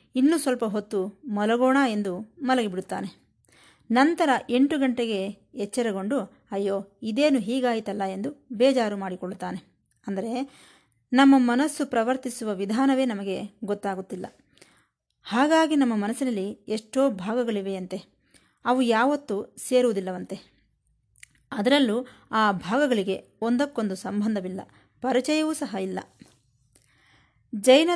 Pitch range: 200-265 Hz